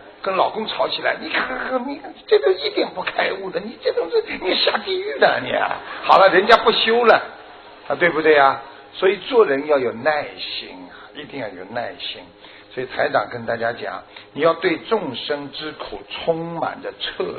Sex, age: male, 60-79